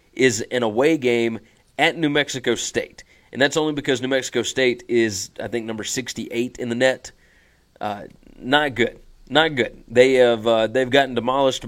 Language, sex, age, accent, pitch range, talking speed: English, male, 30-49, American, 115-140 Hz, 175 wpm